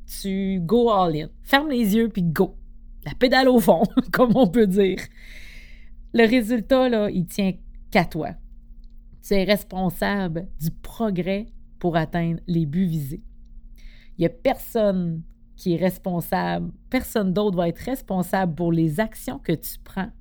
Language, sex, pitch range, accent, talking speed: French, female, 145-190 Hz, Canadian, 165 wpm